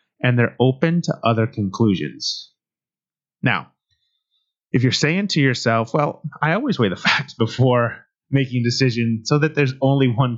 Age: 30-49